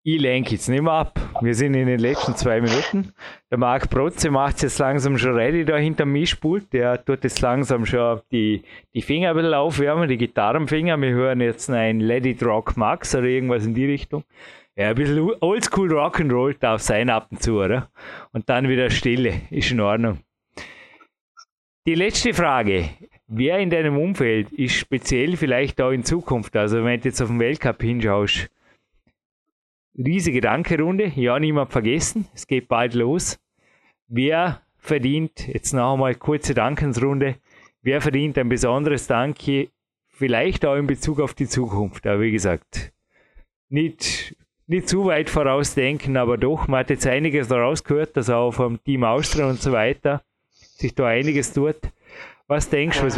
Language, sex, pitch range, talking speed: German, male, 120-150 Hz, 170 wpm